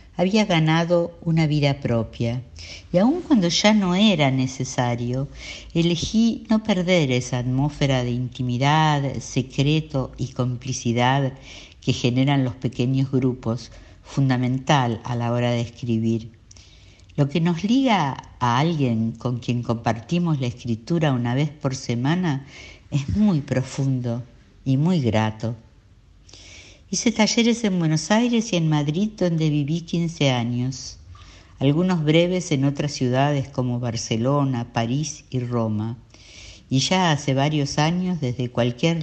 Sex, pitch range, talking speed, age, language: female, 120-160 Hz, 130 wpm, 60-79, Spanish